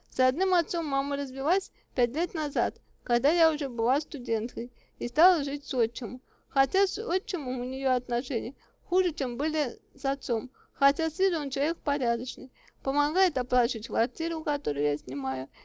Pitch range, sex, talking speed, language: 240-300 Hz, female, 155 wpm, Russian